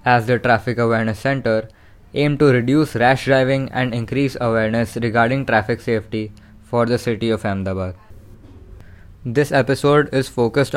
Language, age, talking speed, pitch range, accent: English, 10-29, 140 wpm, 105-130 Hz, Indian